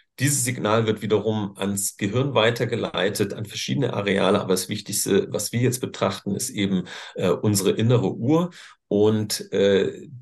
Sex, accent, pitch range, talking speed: male, German, 100-125 Hz, 145 wpm